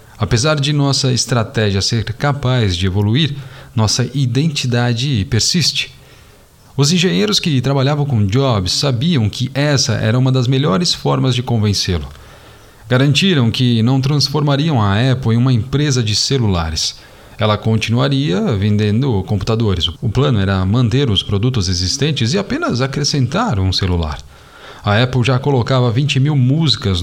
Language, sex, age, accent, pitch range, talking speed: Portuguese, male, 40-59, Brazilian, 105-140 Hz, 135 wpm